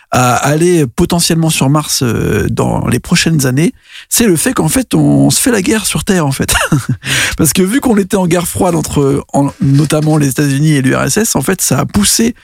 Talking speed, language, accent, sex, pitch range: 205 wpm, French, French, male, 130-175 Hz